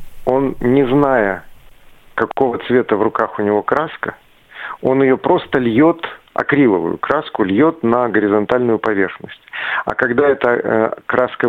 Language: Russian